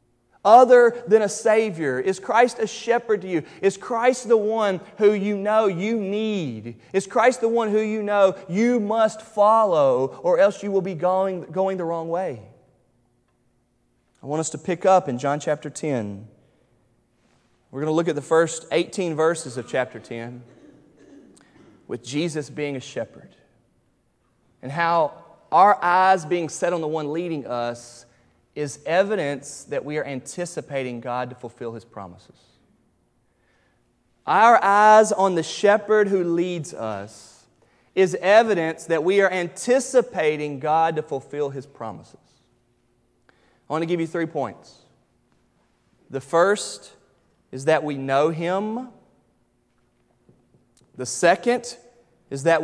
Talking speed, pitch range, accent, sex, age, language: 140 wpm, 135-205 Hz, American, male, 30-49, English